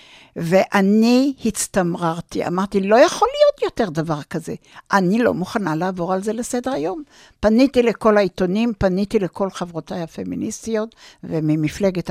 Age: 60-79